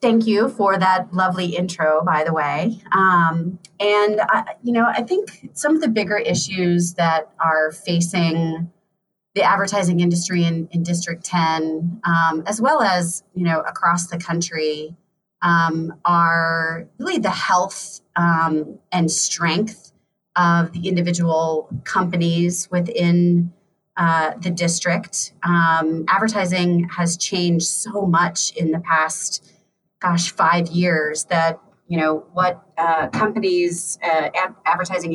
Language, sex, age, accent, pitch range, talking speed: English, female, 30-49, American, 165-185 Hz, 130 wpm